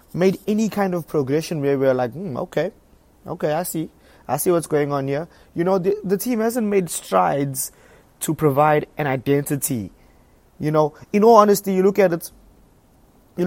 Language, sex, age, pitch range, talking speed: English, male, 20-39, 145-190 Hz, 185 wpm